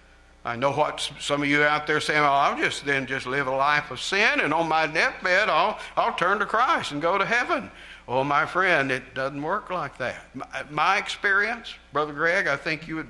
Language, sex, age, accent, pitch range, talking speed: English, male, 60-79, American, 130-220 Hz, 230 wpm